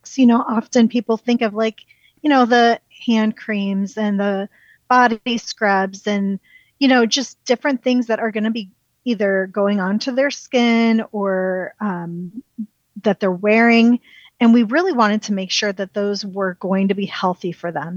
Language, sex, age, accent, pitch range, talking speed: English, female, 30-49, American, 200-240 Hz, 180 wpm